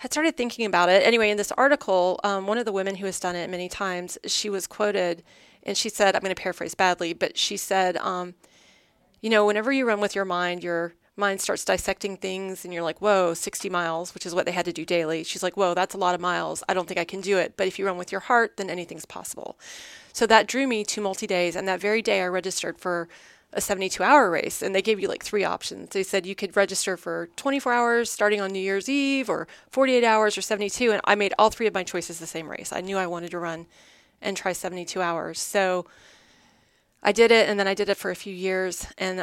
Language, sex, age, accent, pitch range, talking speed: English, female, 30-49, American, 175-205 Hz, 260 wpm